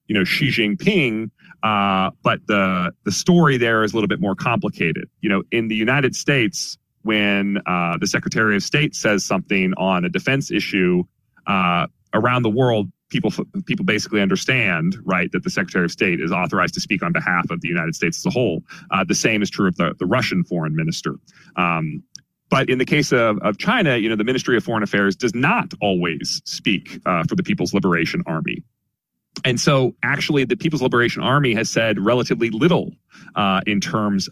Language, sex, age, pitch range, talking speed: English, male, 40-59, 95-125 Hz, 195 wpm